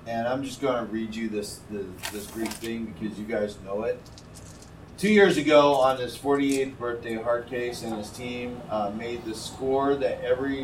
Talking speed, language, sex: 185 wpm, English, male